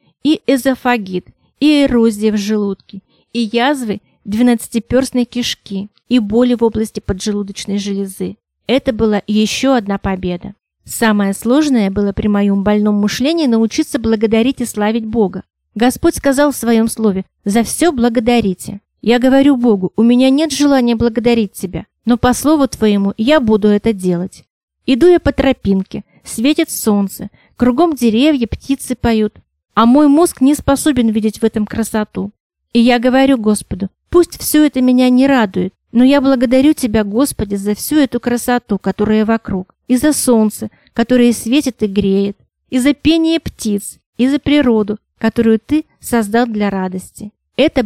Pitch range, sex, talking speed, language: 210-260 Hz, female, 150 wpm, Russian